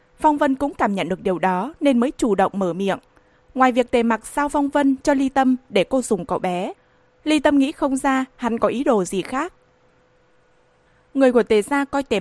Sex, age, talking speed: female, 20-39, 225 wpm